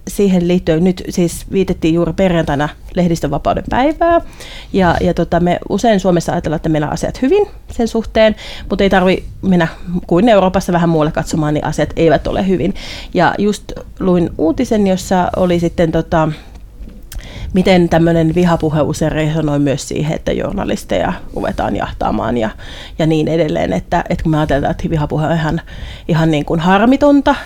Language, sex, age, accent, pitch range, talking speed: Finnish, female, 30-49, native, 155-190 Hz, 155 wpm